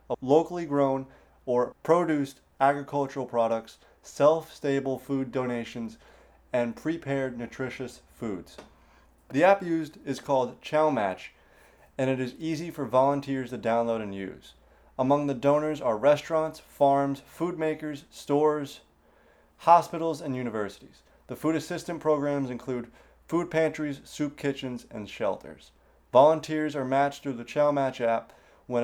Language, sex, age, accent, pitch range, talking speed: English, male, 30-49, American, 120-150 Hz, 125 wpm